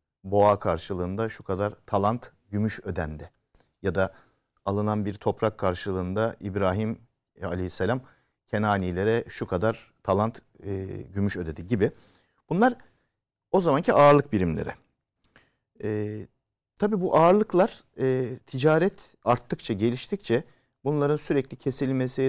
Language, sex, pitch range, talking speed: Turkish, male, 100-135 Hz, 105 wpm